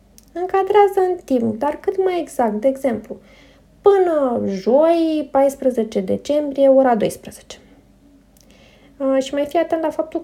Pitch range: 215-300 Hz